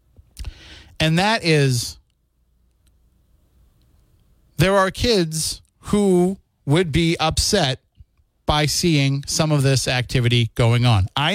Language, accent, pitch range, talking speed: English, American, 120-170 Hz, 100 wpm